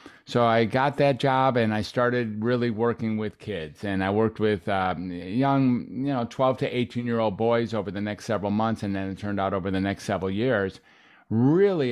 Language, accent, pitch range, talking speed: English, American, 100-120 Hz, 210 wpm